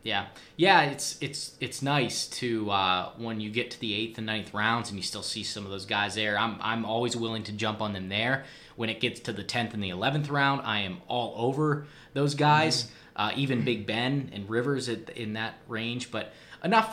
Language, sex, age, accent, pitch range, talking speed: English, male, 20-39, American, 110-130 Hz, 225 wpm